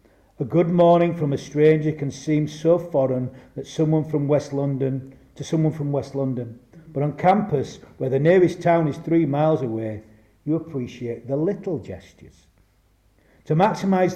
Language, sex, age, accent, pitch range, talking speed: English, male, 50-69, British, 110-160 Hz, 160 wpm